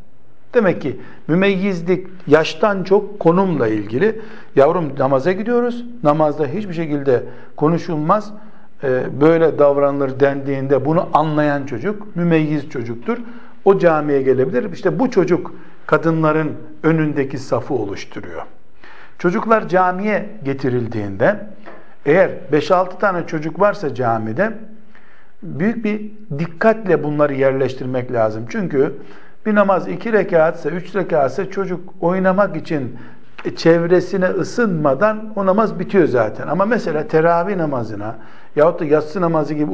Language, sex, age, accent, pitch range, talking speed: Turkish, male, 60-79, native, 145-195 Hz, 110 wpm